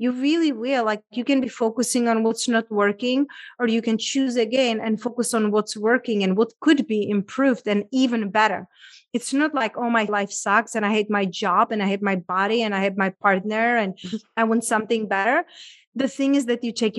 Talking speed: 225 wpm